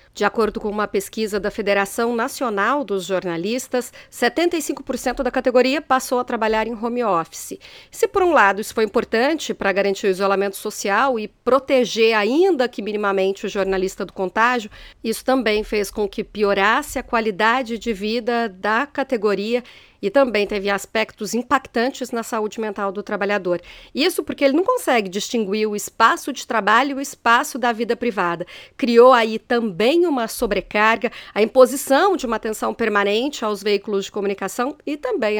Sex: female